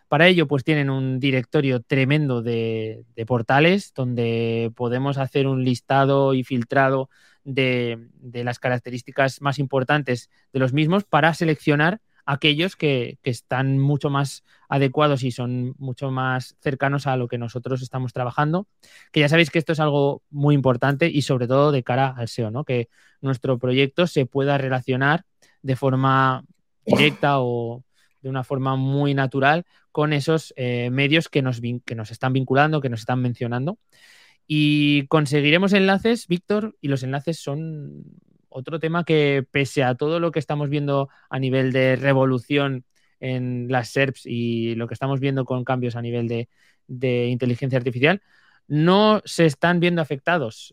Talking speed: 160 wpm